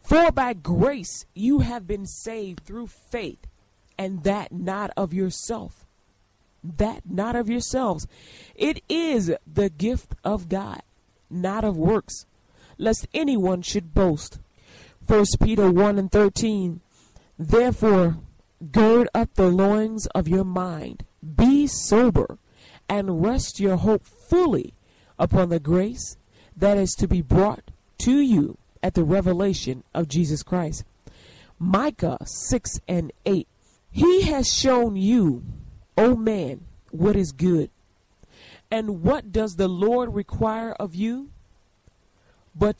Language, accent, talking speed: English, American, 125 wpm